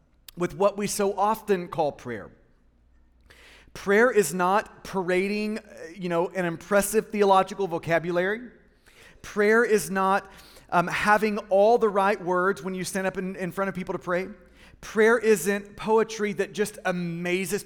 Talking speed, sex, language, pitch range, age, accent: 145 wpm, male, English, 170-205 Hz, 30-49, American